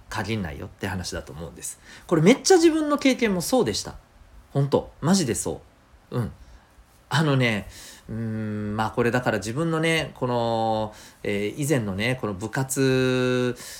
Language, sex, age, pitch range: Japanese, male, 40-59, 95-145 Hz